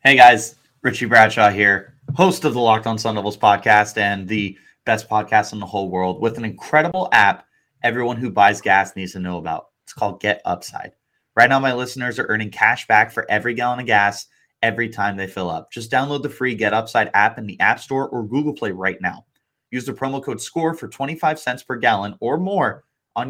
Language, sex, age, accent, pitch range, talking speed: English, male, 30-49, American, 110-140 Hz, 215 wpm